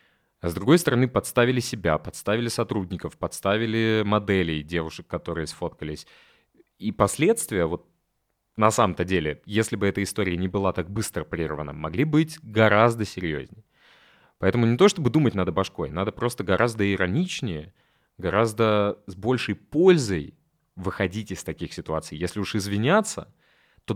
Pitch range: 90-120 Hz